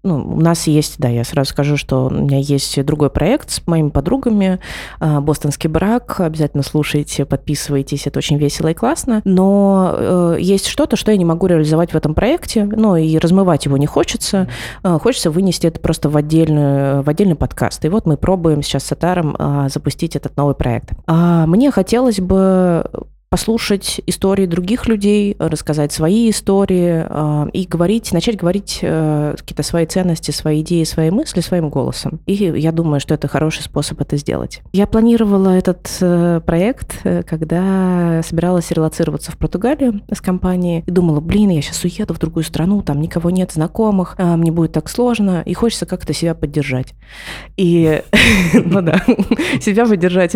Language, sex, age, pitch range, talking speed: Russian, female, 20-39, 155-190 Hz, 165 wpm